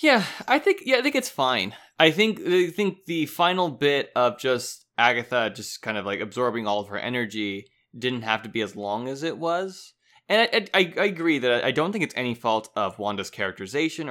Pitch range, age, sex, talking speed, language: 105-160 Hz, 20-39, male, 215 wpm, English